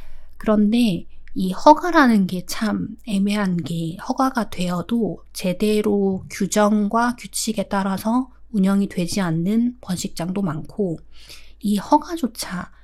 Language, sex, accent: Korean, female, native